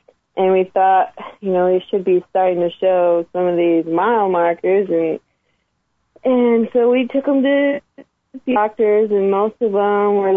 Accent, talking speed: American, 175 wpm